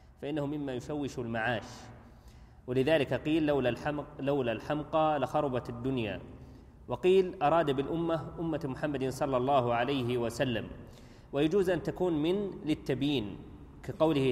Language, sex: Arabic, male